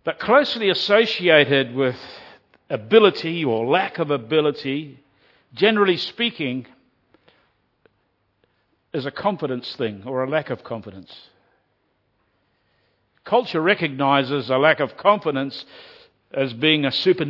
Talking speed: 105 wpm